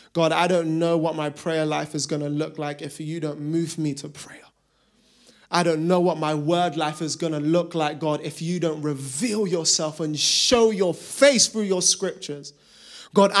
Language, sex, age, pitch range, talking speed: English, male, 20-39, 145-185 Hz, 205 wpm